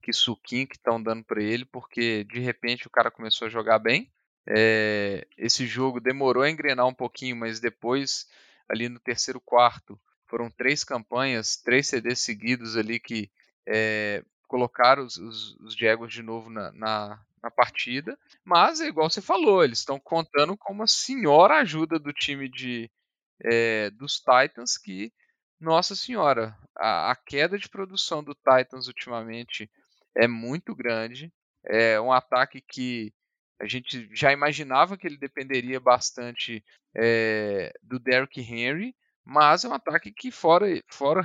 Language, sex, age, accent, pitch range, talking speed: Portuguese, male, 10-29, Brazilian, 115-150 Hz, 155 wpm